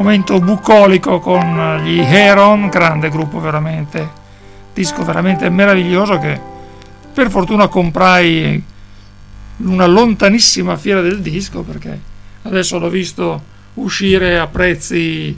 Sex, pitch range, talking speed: male, 165-205 Hz, 105 wpm